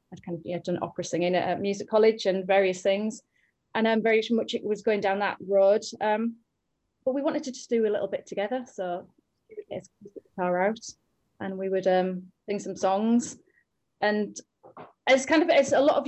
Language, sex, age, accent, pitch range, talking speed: English, female, 30-49, British, 180-220 Hz, 200 wpm